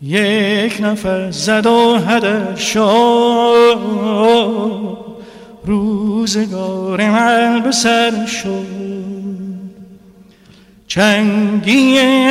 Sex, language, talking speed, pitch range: male, Persian, 50 wpm, 175-205 Hz